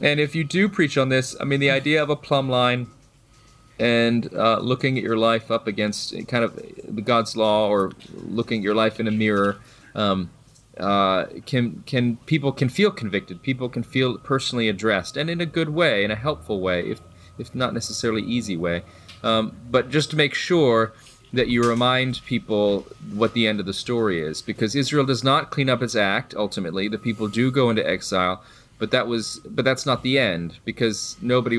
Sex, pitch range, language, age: male, 100-125 Hz, English, 30-49